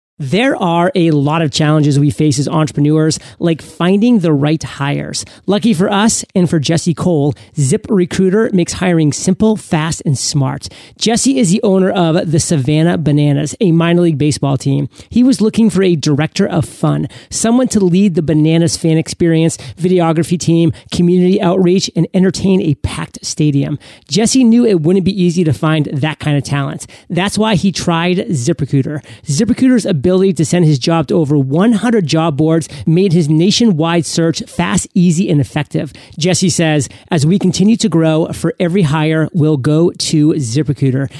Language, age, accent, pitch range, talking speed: English, 40-59, American, 150-190 Hz, 170 wpm